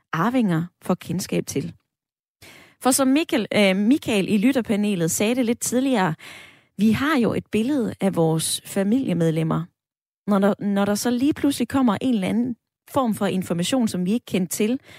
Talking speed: 170 wpm